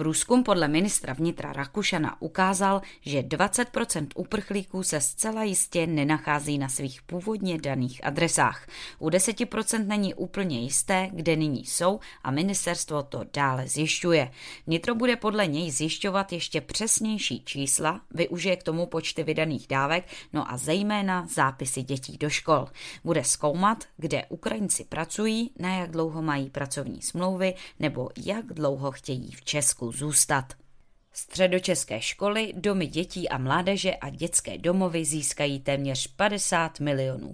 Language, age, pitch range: Czech, 20-39, 140-185 Hz